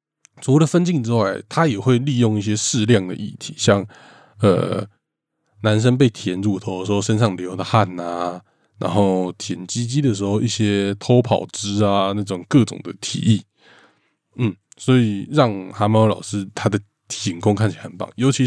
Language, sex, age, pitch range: Chinese, male, 20-39, 100-125 Hz